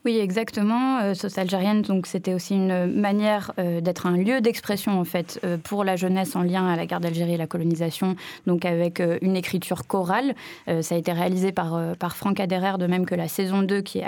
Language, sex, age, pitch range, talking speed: French, female, 20-39, 180-220 Hz, 230 wpm